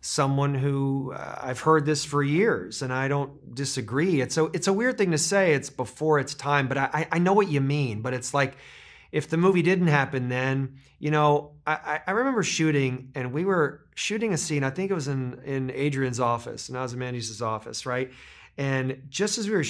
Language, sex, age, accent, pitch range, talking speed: English, male, 30-49, American, 130-155 Hz, 210 wpm